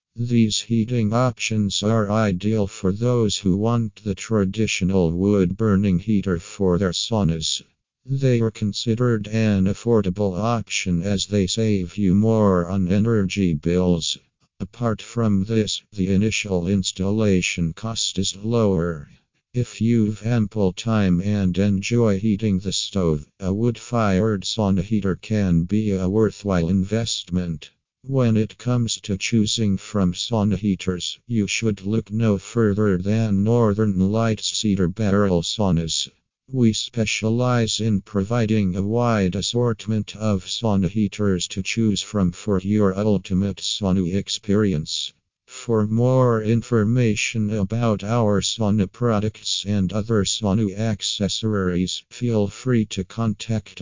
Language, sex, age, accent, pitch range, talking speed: English, male, 50-69, American, 95-110 Hz, 120 wpm